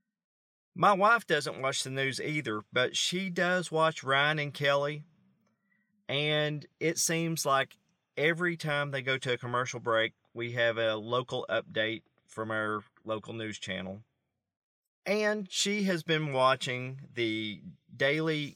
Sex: male